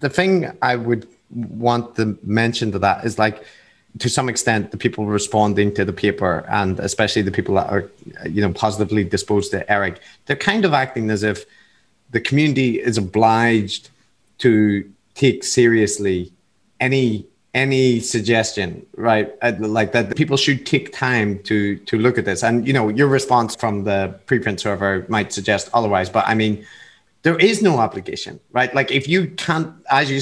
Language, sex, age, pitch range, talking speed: English, male, 30-49, 110-140 Hz, 175 wpm